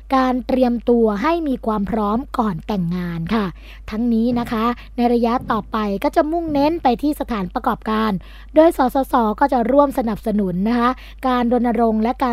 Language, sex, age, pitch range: Thai, female, 20-39, 215-265 Hz